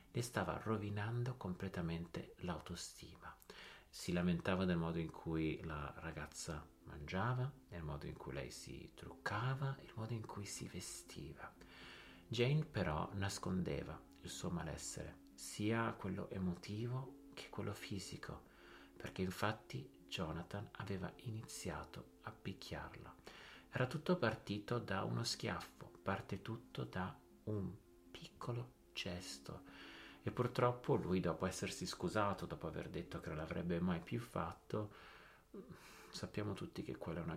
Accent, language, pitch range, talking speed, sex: native, Italian, 85-105 Hz, 125 wpm, male